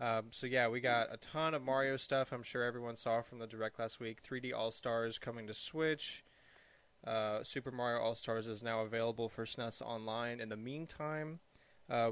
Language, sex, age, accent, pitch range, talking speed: English, male, 20-39, American, 110-130 Hz, 190 wpm